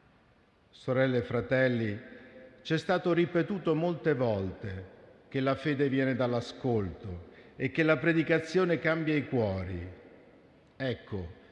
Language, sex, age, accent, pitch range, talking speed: Italian, male, 50-69, native, 115-150 Hz, 110 wpm